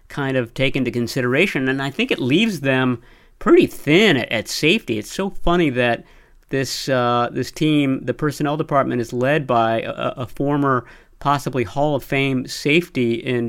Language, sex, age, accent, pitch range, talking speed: English, male, 40-59, American, 120-145 Hz, 175 wpm